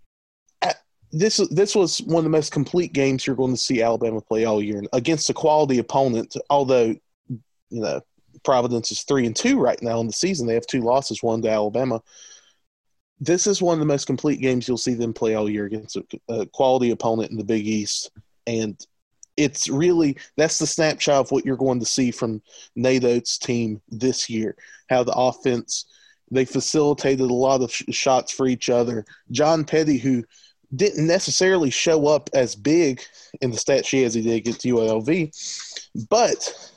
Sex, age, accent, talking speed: male, 20-39, American, 190 wpm